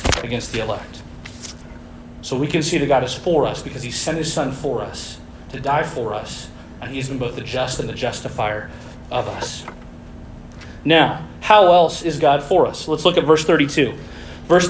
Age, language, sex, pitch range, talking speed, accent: 40-59, English, male, 120-170 Hz, 190 wpm, American